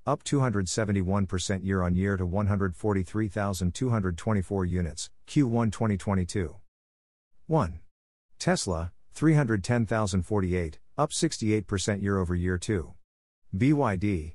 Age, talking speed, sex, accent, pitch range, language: 50-69, 65 wpm, male, American, 90-115 Hz, English